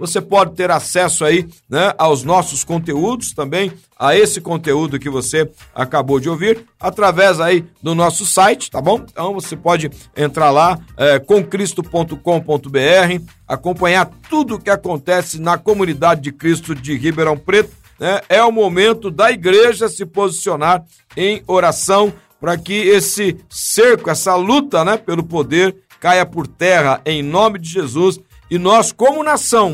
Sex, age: male, 60-79